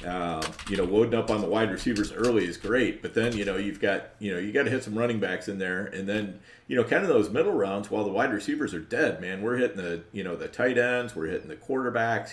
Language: English